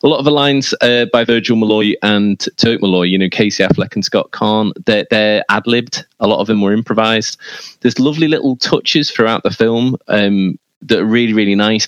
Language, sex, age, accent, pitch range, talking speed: English, male, 20-39, British, 105-140 Hz, 210 wpm